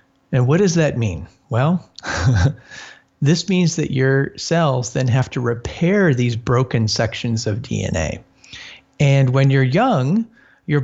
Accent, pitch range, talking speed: American, 115-145 Hz, 140 wpm